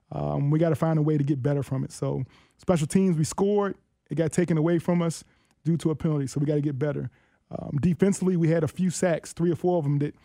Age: 20-39